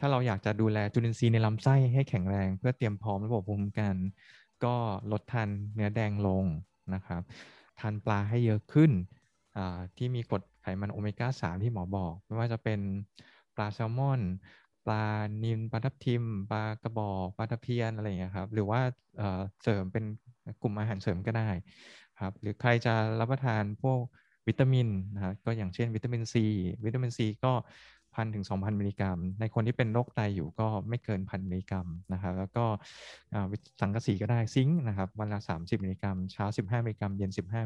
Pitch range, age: 100-120 Hz, 20-39